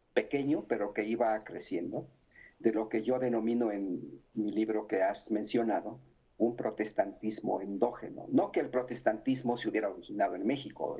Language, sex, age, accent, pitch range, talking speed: Spanish, male, 50-69, Mexican, 110-125 Hz, 155 wpm